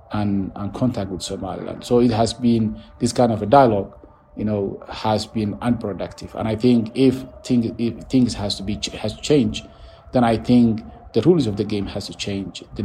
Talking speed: 205 wpm